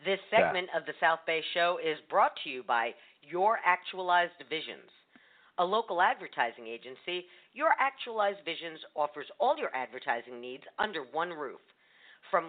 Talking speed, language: 150 wpm, English